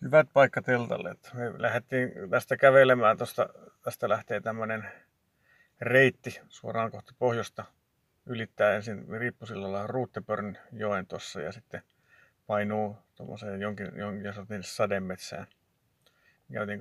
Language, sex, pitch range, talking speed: Finnish, male, 100-120 Hz, 105 wpm